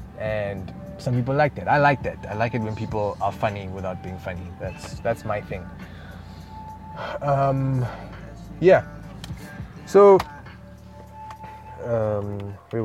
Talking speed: 125 wpm